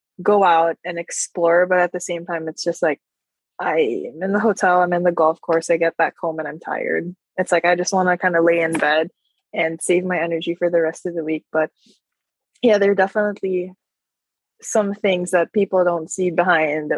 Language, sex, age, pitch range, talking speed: English, female, 20-39, 170-200 Hz, 215 wpm